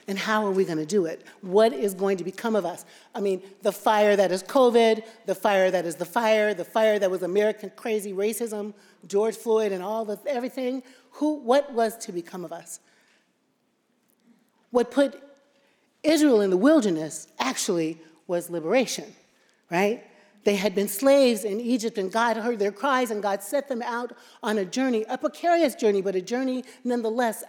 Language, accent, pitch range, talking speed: English, American, 205-270 Hz, 180 wpm